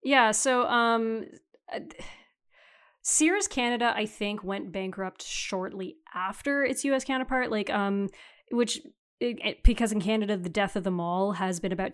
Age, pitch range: 20-39, 205-260 Hz